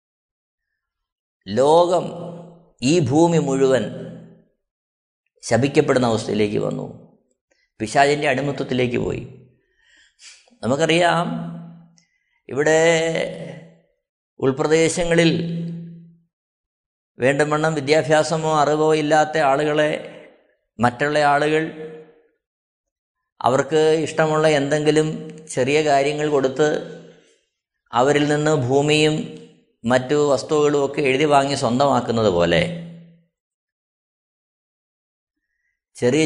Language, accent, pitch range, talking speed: Malayalam, native, 135-165 Hz, 60 wpm